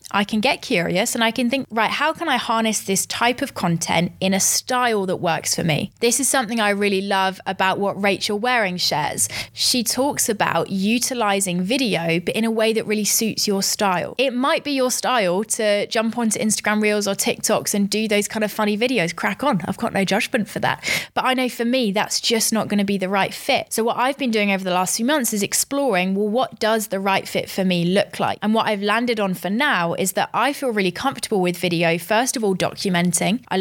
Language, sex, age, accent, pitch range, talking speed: English, female, 20-39, British, 190-230 Hz, 235 wpm